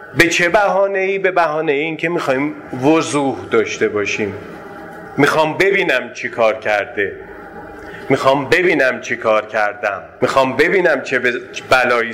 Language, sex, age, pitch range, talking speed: Persian, male, 30-49, 130-185 Hz, 135 wpm